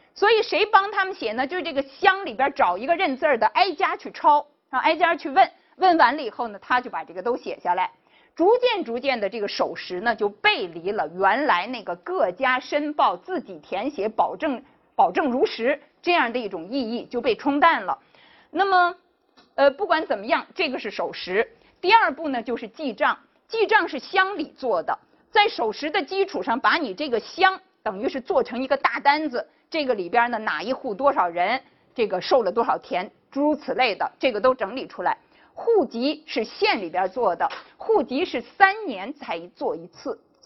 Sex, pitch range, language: female, 235-360 Hz, Chinese